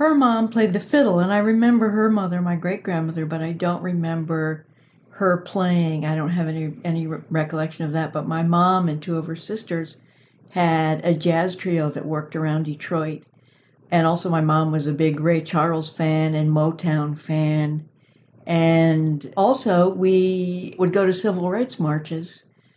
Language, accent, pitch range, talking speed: English, American, 155-185 Hz, 170 wpm